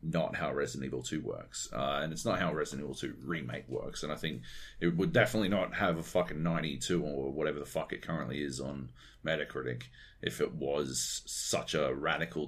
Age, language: 40-59, English